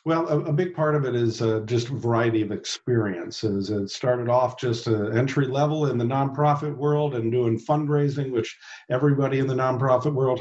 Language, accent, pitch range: English, American, 120-145 Hz